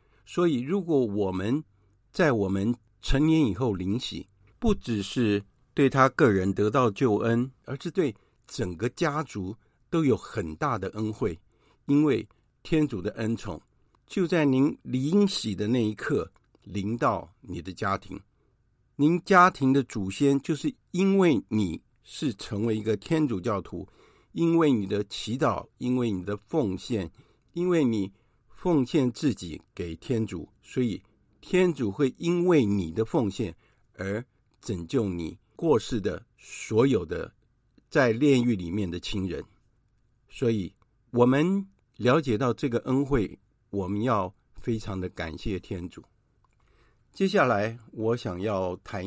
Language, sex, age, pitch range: Chinese, male, 60-79, 100-135 Hz